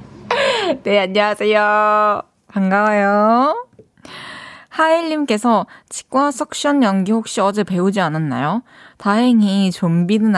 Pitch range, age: 170-250 Hz, 20-39